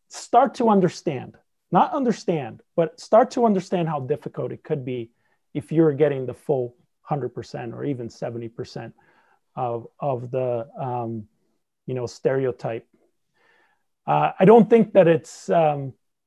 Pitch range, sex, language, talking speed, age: 125-165 Hz, male, English, 135 wpm, 30-49